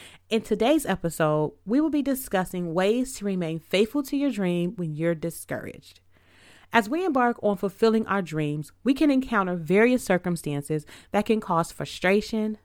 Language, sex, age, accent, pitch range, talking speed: English, female, 30-49, American, 170-235 Hz, 155 wpm